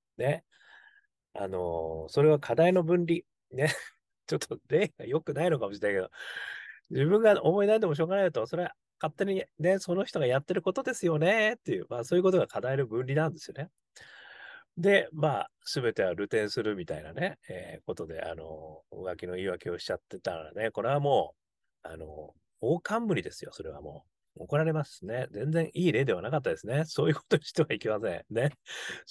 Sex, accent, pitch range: male, native, 155-235 Hz